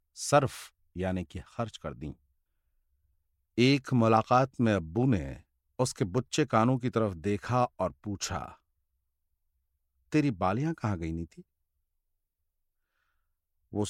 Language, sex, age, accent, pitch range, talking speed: Hindi, male, 50-69, native, 75-115 Hz, 110 wpm